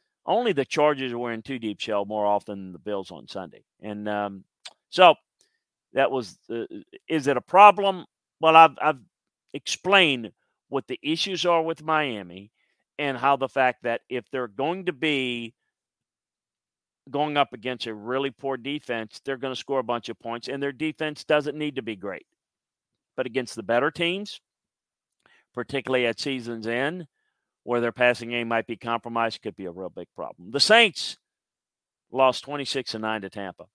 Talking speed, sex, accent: 170 wpm, male, American